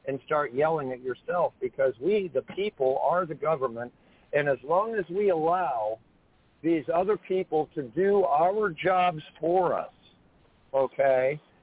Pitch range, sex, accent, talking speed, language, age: 140-185 Hz, male, American, 145 wpm, English, 50-69